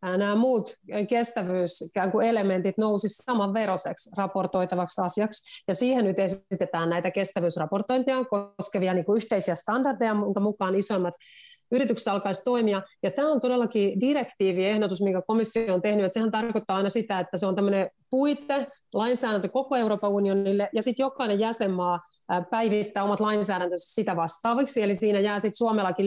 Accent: native